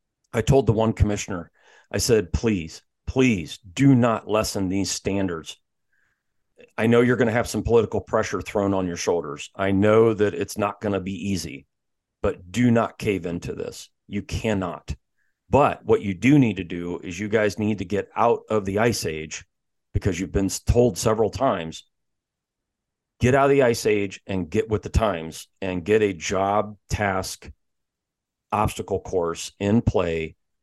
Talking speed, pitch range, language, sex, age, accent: 170 wpm, 95-115 Hz, English, male, 40-59, American